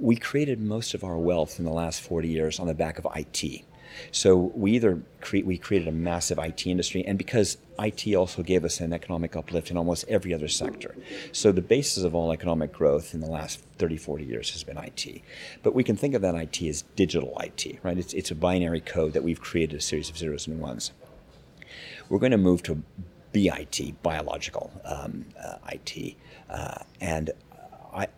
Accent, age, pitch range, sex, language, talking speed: American, 50-69, 80-95 Hz, male, English, 200 wpm